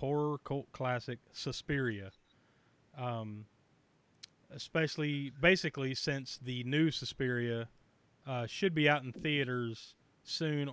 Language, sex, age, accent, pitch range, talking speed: English, male, 30-49, American, 120-145 Hz, 100 wpm